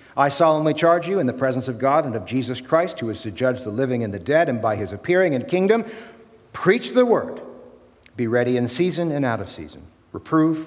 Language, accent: English, American